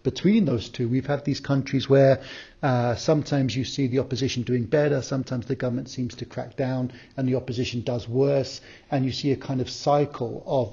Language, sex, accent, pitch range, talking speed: English, male, British, 120-135 Hz, 200 wpm